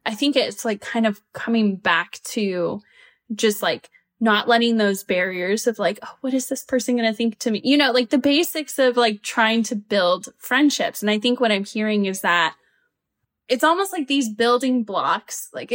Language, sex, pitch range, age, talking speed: English, female, 195-250 Hz, 10-29, 200 wpm